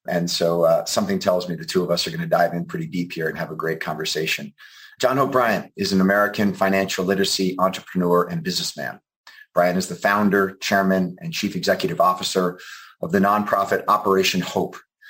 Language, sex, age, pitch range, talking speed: English, male, 30-49, 95-110 Hz, 185 wpm